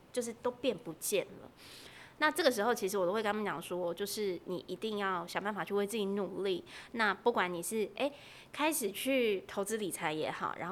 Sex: female